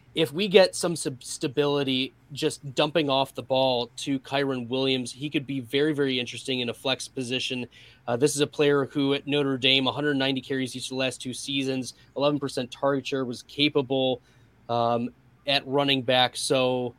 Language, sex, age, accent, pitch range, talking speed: English, male, 20-39, American, 125-145 Hz, 175 wpm